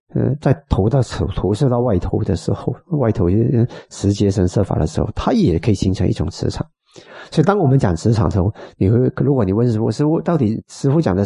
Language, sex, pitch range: Chinese, male, 95-135 Hz